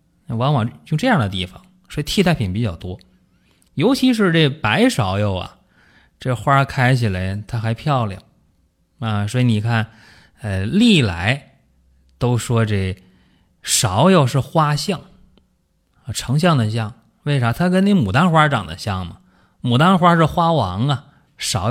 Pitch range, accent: 105-160 Hz, native